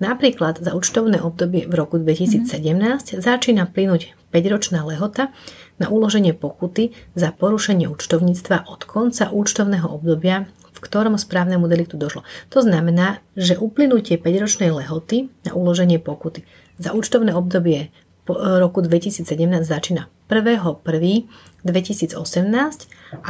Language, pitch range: Slovak, 170-195 Hz